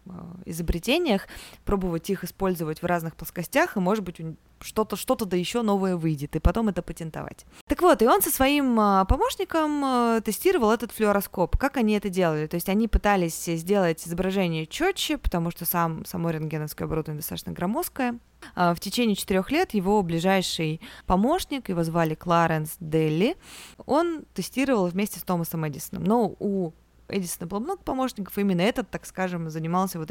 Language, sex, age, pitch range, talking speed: Russian, female, 20-39, 170-220 Hz, 155 wpm